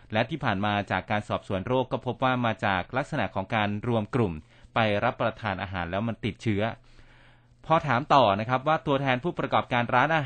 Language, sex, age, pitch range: Thai, male, 30-49, 110-135 Hz